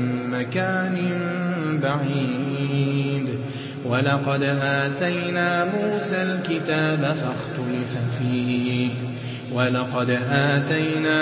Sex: male